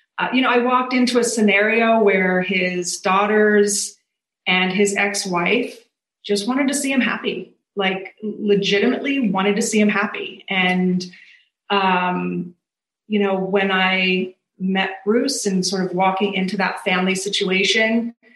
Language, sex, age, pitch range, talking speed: English, female, 30-49, 190-245 Hz, 140 wpm